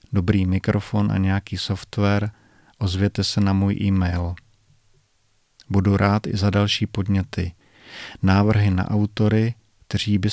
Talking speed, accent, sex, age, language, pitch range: 120 wpm, native, male, 40-59, Czech, 100-110 Hz